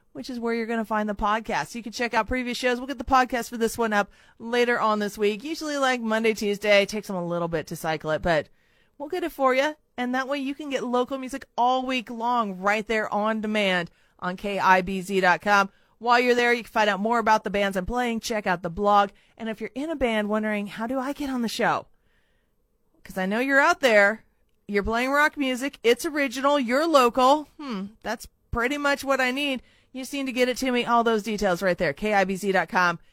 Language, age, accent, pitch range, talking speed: English, 30-49, American, 200-255 Hz, 230 wpm